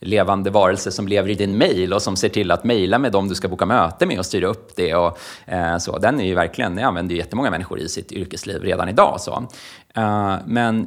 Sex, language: male, Swedish